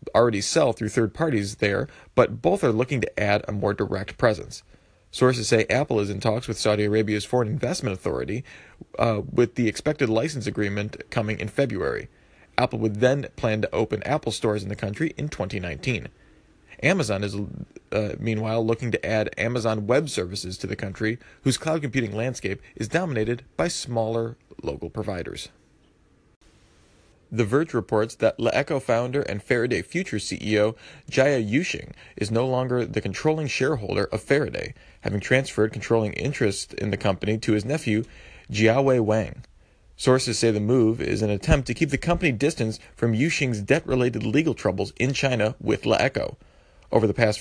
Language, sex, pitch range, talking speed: English, male, 105-130 Hz, 165 wpm